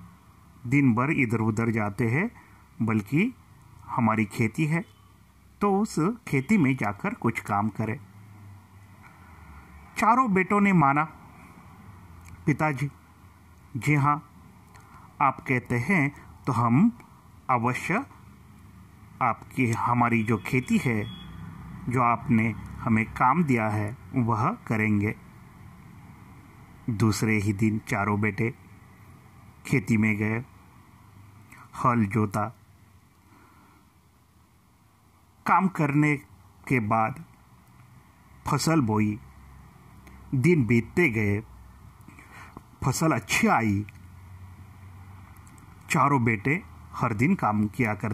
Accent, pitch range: native, 100-135 Hz